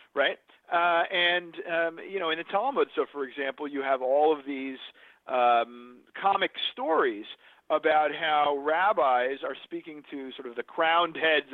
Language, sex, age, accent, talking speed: English, male, 50-69, American, 160 wpm